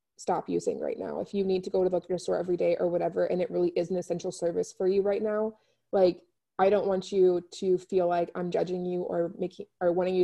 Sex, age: female, 20-39